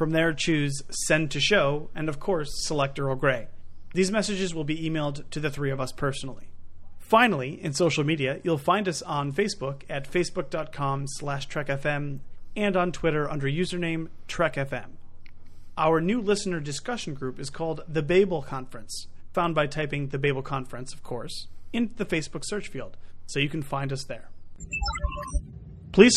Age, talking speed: 30-49, 165 wpm